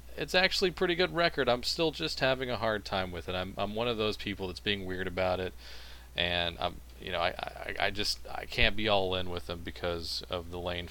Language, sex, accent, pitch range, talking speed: English, male, American, 80-105 Hz, 250 wpm